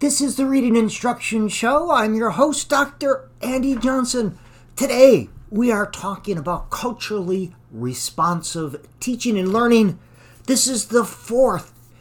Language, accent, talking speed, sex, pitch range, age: English, American, 130 wpm, male, 140-215 Hz, 50-69